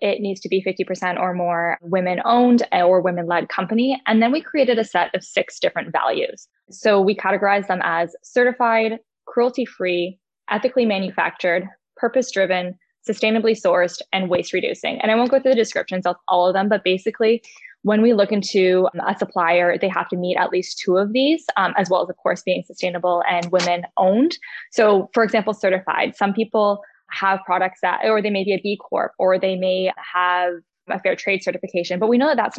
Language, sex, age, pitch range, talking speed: English, female, 10-29, 180-225 Hz, 190 wpm